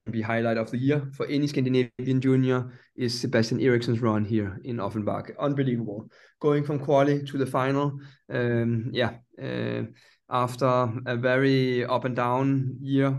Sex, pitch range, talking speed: male, 115-135 Hz, 150 wpm